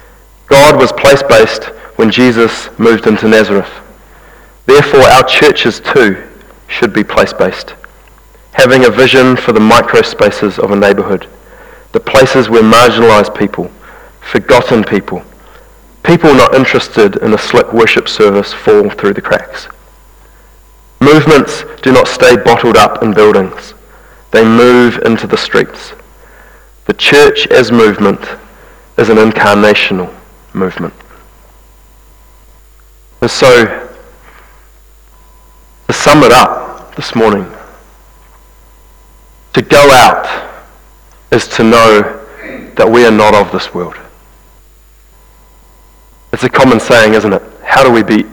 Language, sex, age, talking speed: English, male, 30-49, 120 wpm